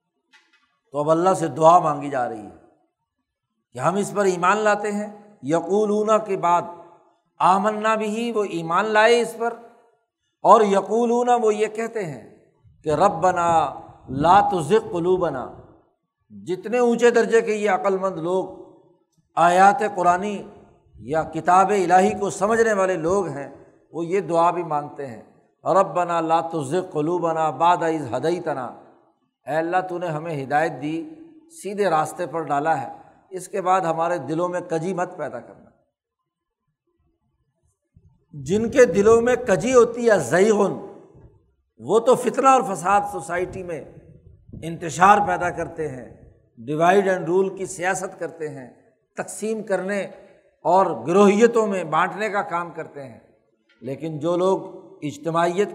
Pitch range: 165-205 Hz